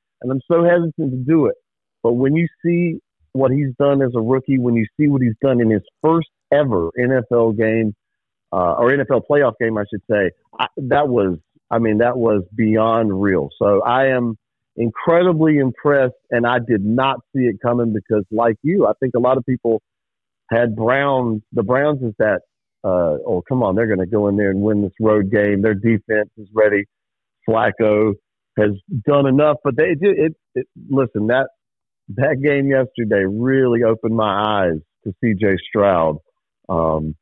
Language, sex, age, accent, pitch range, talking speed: English, male, 50-69, American, 110-155 Hz, 185 wpm